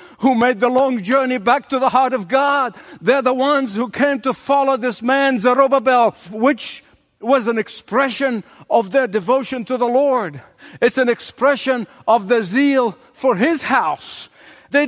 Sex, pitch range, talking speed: male, 230-270 Hz, 165 wpm